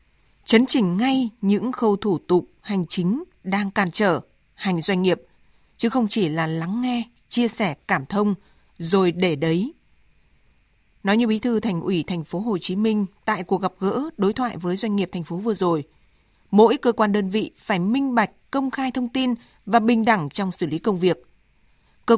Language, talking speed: Vietnamese, 200 wpm